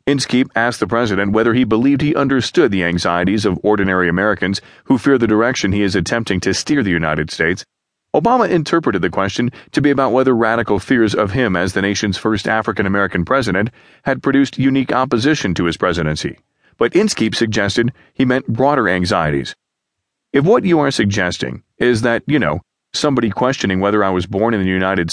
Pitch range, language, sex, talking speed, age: 95-130 Hz, English, male, 180 wpm, 40-59